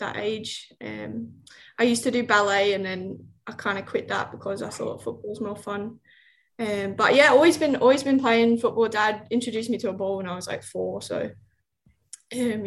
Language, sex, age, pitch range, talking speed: English, female, 10-29, 205-235 Hz, 205 wpm